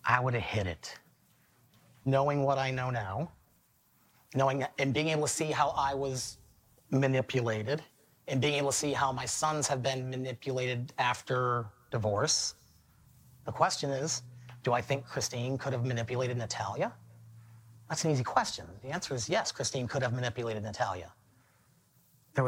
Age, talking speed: 30-49, 155 wpm